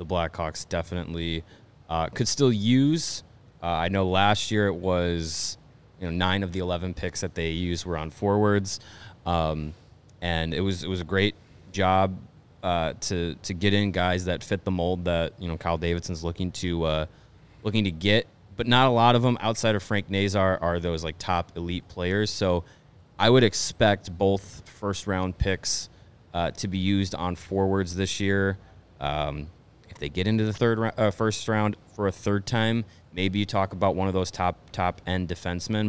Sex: male